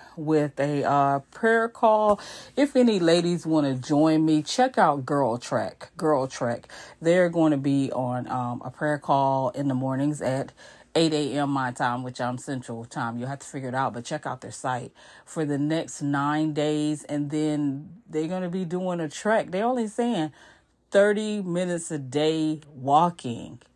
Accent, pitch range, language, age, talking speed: American, 140-175 Hz, English, 40-59, 180 wpm